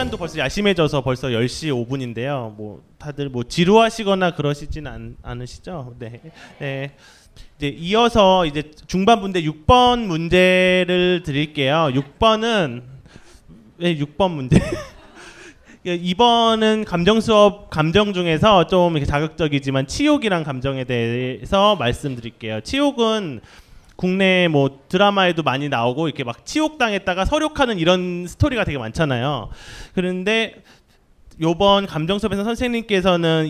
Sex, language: male, Korean